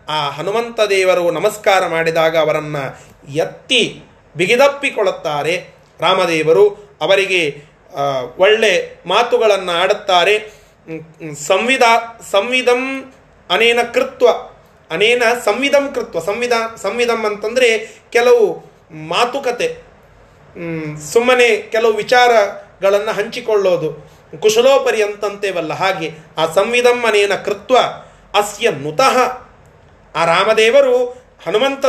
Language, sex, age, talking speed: Kannada, male, 30-49, 75 wpm